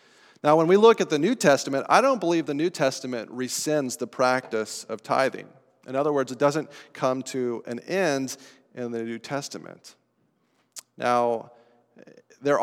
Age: 40-59